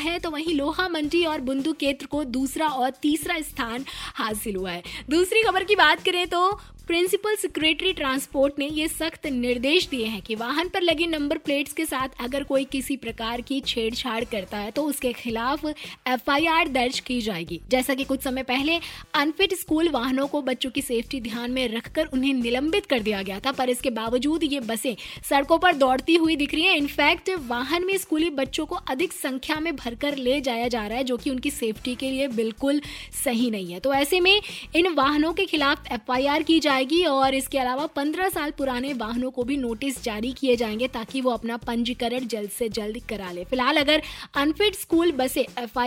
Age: 20-39